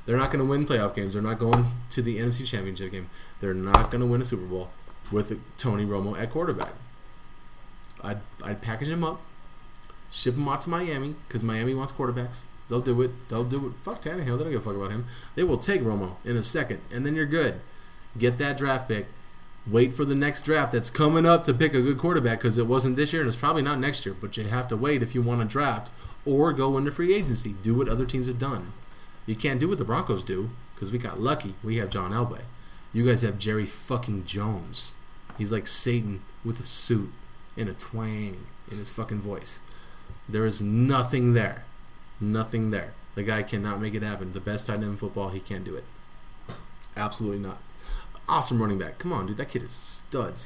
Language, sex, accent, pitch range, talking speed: English, male, American, 105-130 Hz, 220 wpm